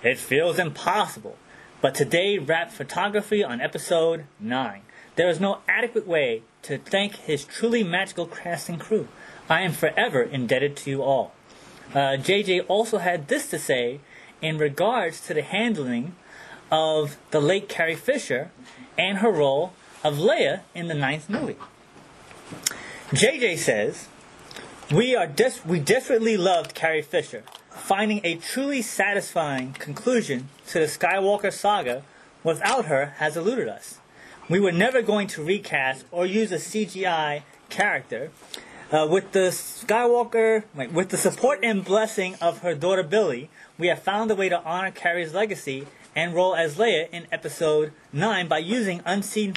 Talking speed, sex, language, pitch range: 145 wpm, male, English, 160-215 Hz